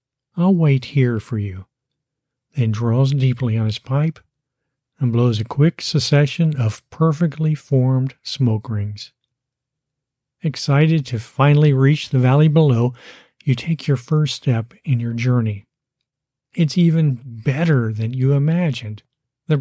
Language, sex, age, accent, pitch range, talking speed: English, male, 50-69, American, 125-150 Hz, 130 wpm